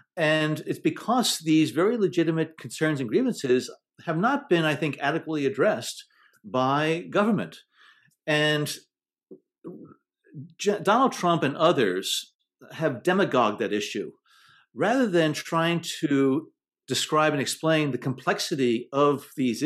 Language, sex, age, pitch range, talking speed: English, male, 50-69, 135-170 Hz, 115 wpm